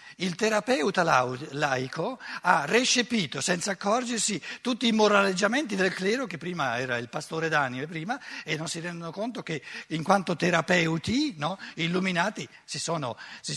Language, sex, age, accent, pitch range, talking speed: Italian, male, 60-79, native, 125-185 Hz, 145 wpm